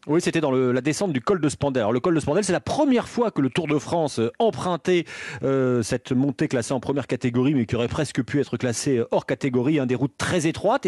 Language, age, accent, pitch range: French, 40-59, French, 145-195 Hz